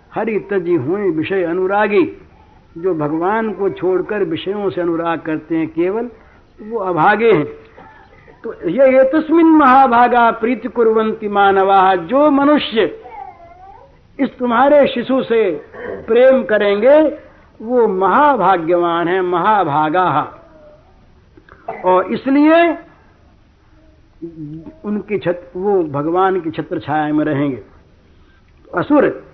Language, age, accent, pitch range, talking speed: Hindi, 60-79, native, 175-265 Hz, 100 wpm